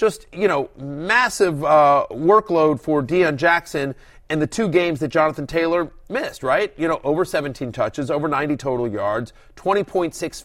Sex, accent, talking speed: male, American, 160 wpm